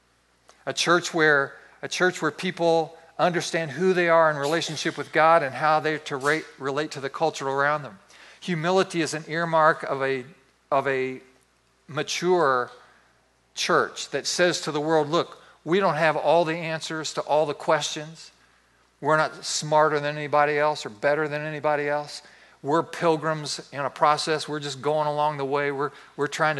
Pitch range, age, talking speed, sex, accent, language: 140-160 Hz, 50-69, 160 wpm, male, American, English